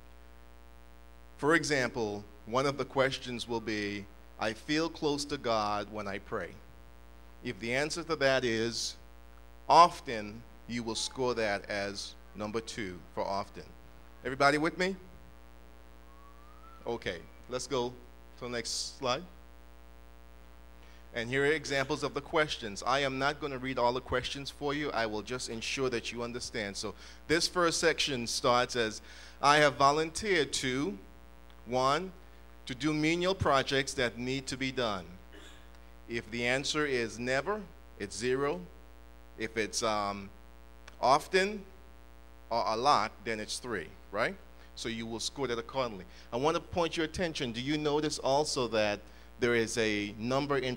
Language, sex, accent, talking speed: English, male, American, 150 wpm